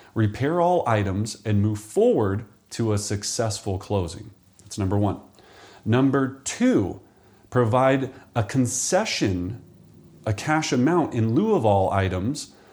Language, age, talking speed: English, 40-59, 125 wpm